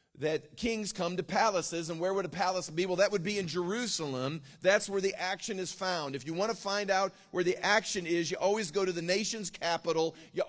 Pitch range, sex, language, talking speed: 165-205 Hz, male, English, 235 wpm